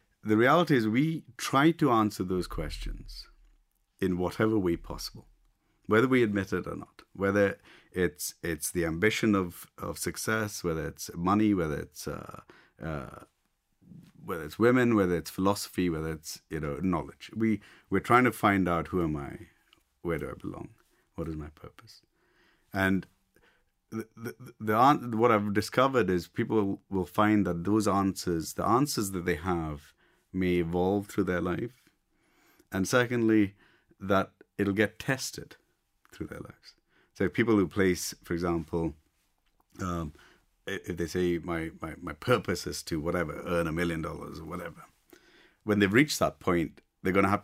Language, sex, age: English, male, 50-69